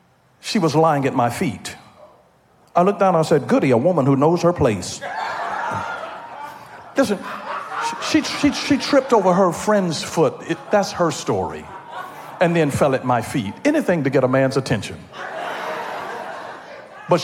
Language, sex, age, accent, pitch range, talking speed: English, male, 50-69, American, 140-220 Hz, 155 wpm